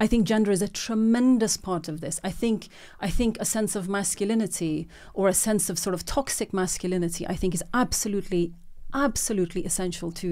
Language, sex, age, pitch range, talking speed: English, female, 30-49, 175-210 Hz, 185 wpm